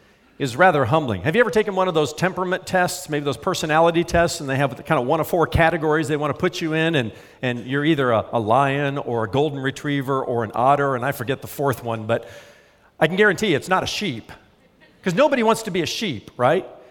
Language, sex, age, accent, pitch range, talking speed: English, male, 50-69, American, 140-185 Hz, 240 wpm